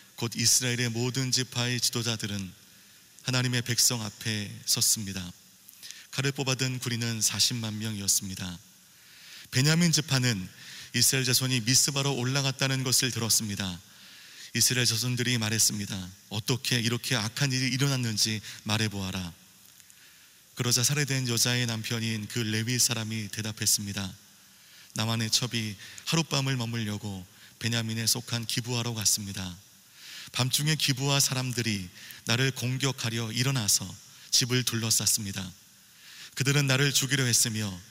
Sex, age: male, 30-49